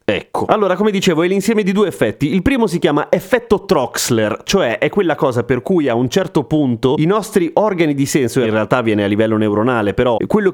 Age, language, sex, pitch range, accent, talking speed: 30-49, Italian, male, 120-165 Hz, native, 215 wpm